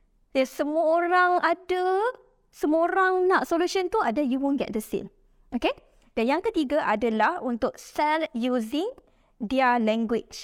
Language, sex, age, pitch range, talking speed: Malay, female, 20-39, 245-320 Hz, 145 wpm